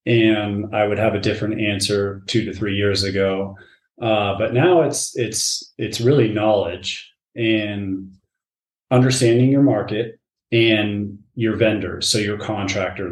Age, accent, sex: 30-49, American, male